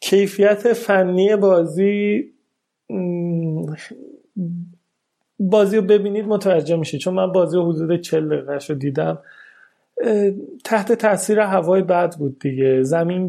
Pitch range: 155-195 Hz